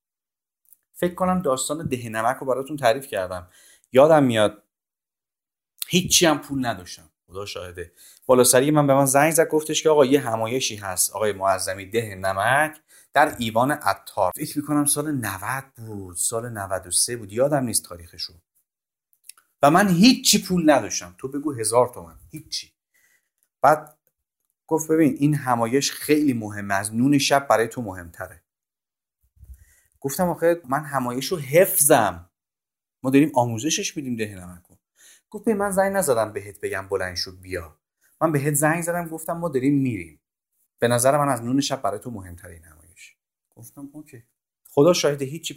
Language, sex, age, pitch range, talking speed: Persian, male, 30-49, 105-155 Hz, 150 wpm